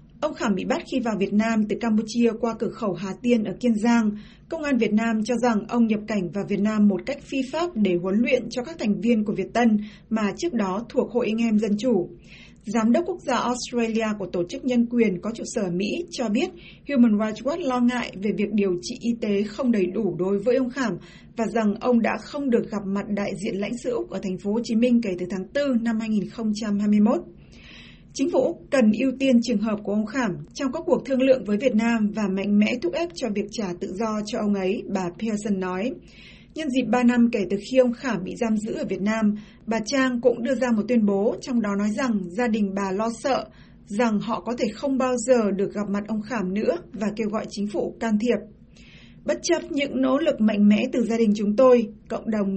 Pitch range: 205-245 Hz